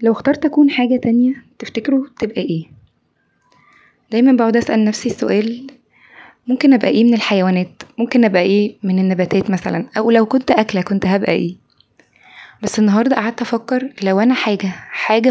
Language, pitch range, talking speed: Arabic, 200-245 Hz, 155 wpm